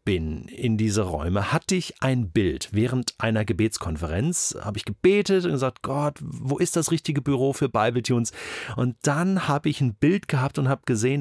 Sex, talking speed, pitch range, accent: male, 175 wpm, 115-155 Hz, German